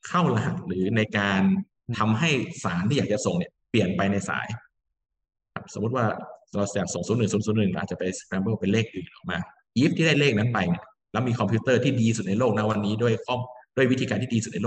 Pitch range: 95-115 Hz